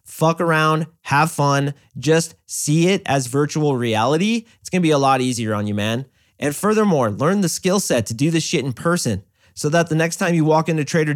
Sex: male